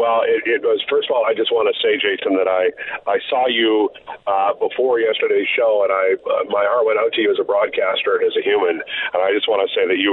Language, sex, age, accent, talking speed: English, male, 50-69, American, 275 wpm